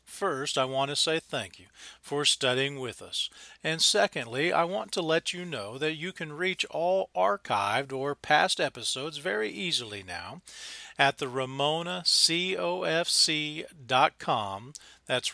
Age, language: 40-59, English